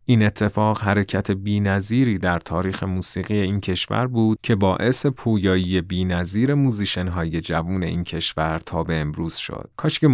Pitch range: 90-110 Hz